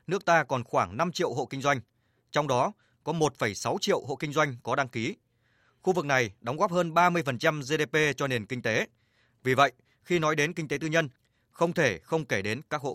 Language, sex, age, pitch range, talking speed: Vietnamese, male, 20-39, 120-155 Hz, 220 wpm